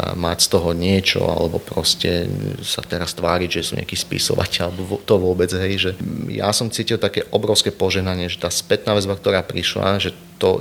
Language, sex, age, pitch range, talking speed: Slovak, male, 30-49, 90-100 Hz, 180 wpm